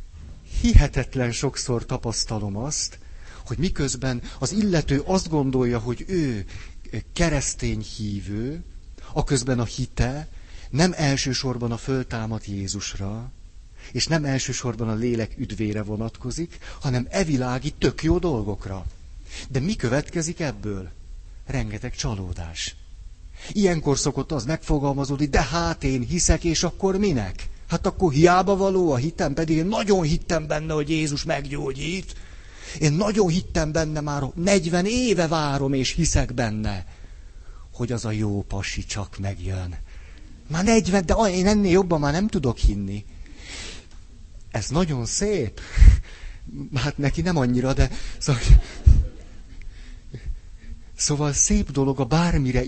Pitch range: 95-155 Hz